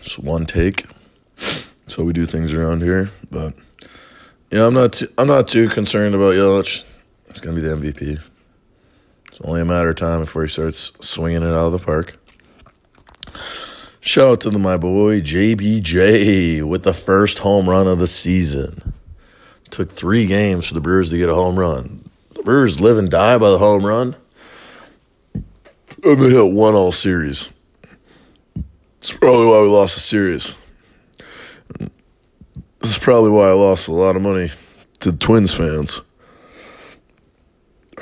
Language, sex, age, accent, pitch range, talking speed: English, male, 30-49, American, 80-105 Hz, 170 wpm